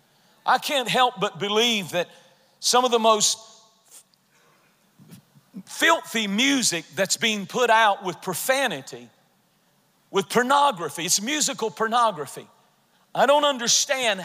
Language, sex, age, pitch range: English, male, 40-59, 190-265 Hz